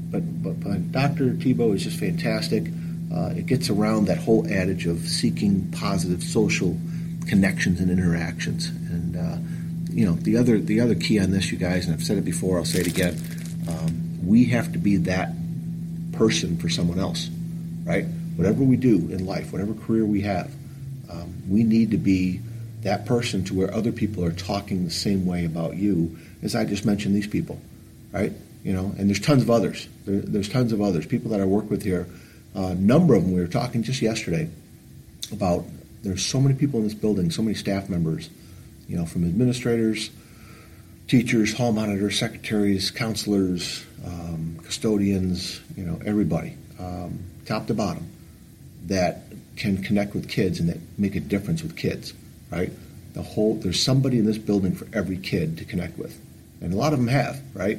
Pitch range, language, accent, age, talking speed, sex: 90-135 Hz, English, American, 50-69, 185 wpm, male